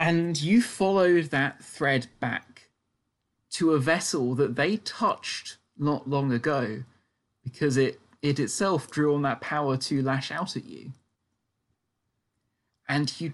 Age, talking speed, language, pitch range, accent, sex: 20-39, 135 wpm, English, 115-160 Hz, British, male